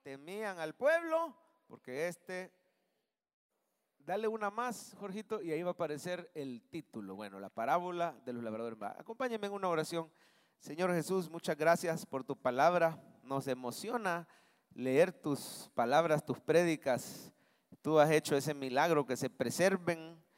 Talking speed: 140 wpm